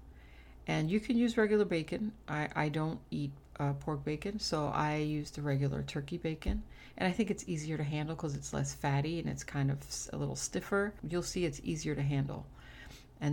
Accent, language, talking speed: American, English, 205 wpm